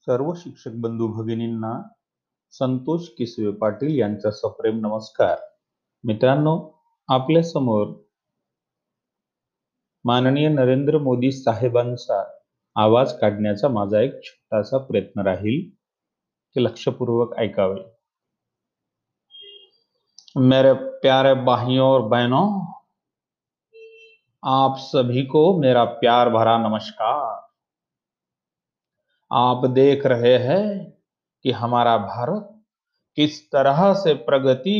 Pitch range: 120-175 Hz